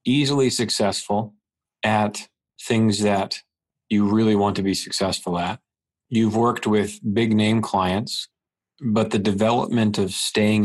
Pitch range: 95-110 Hz